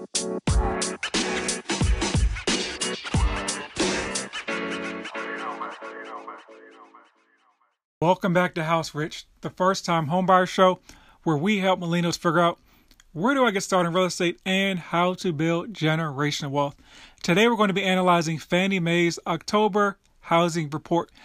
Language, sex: English, male